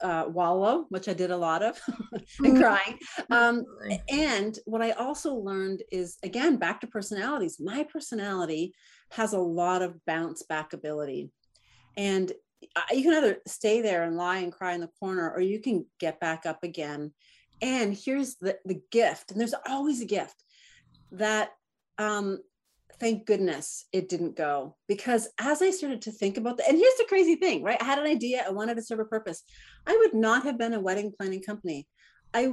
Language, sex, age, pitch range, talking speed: English, female, 40-59, 190-295 Hz, 190 wpm